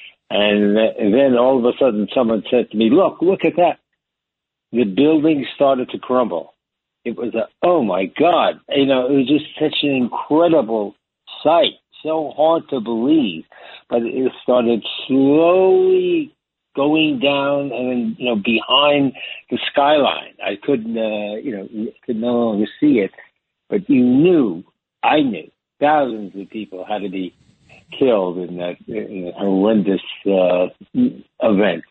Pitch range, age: 105-145 Hz, 60-79